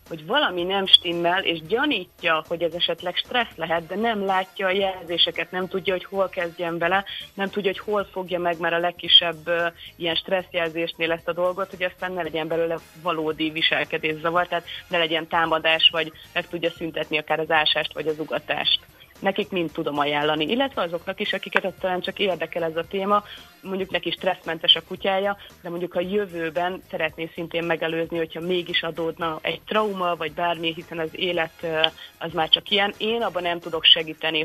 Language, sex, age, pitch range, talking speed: Hungarian, female, 30-49, 160-180 Hz, 180 wpm